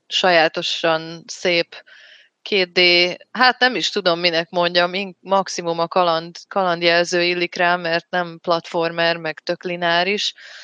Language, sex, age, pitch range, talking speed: Hungarian, female, 20-39, 165-185 Hz, 120 wpm